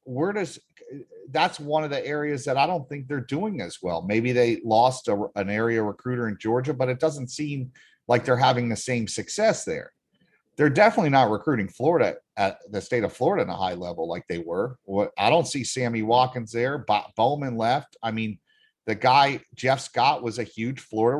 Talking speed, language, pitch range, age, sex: 200 wpm, English, 125-185 Hz, 40-59, male